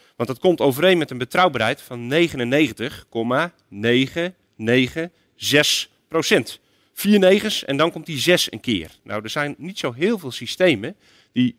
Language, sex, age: Dutch, male, 40-59